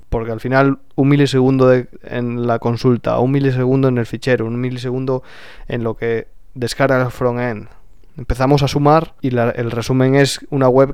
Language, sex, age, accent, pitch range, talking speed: Spanish, male, 20-39, Spanish, 120-140 Hz, 180 wpm